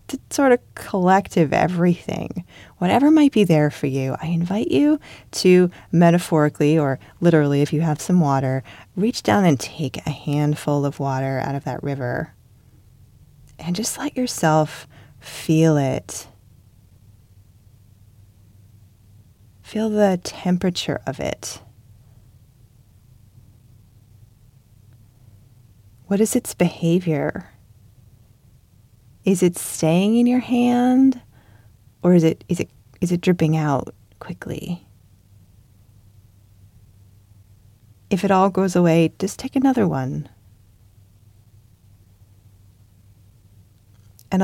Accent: American